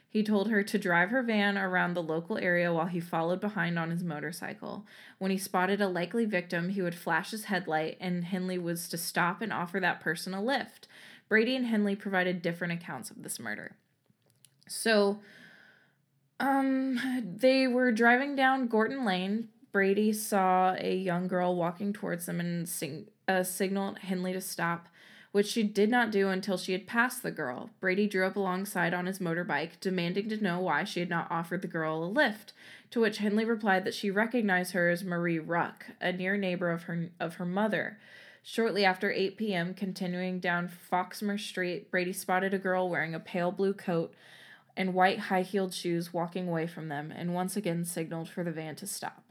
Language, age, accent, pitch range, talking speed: English, 20-39, American, 175-205 Hz, 185 wpm